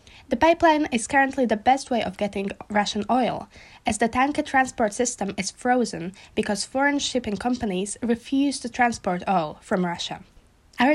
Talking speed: 160 wpm